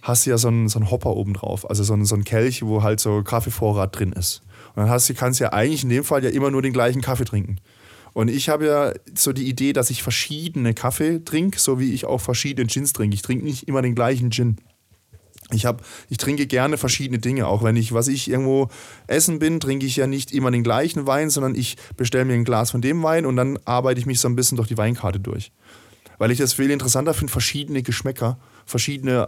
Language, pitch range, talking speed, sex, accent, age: German, 110-135 Hz, 245 wpm, male, German, 20-39